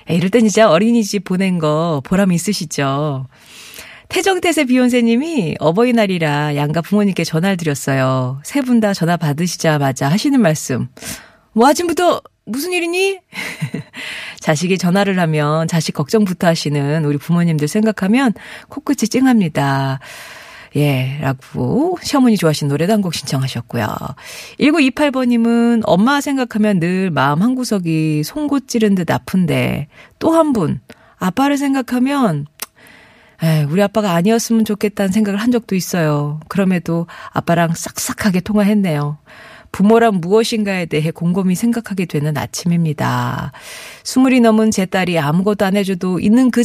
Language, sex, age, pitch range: Korean, female, 40-59, 155-230 Hz